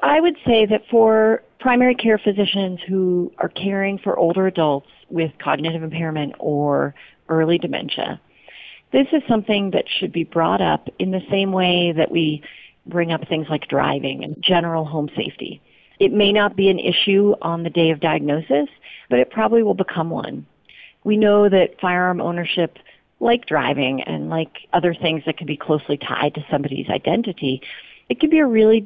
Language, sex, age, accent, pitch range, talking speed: English, female, 40-59, American, 150-195 Hz, 175 wpm